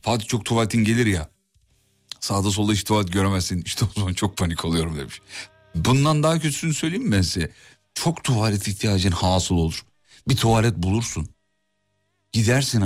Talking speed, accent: 155 wpm, native